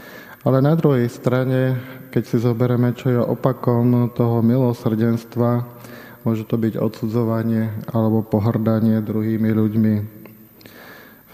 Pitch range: 115-130 Hz